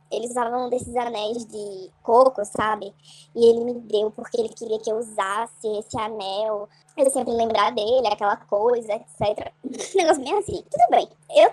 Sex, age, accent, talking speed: male, 10-29, Brazilian, 170 wpm